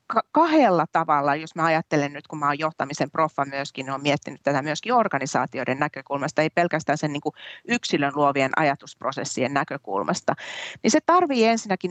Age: 40-59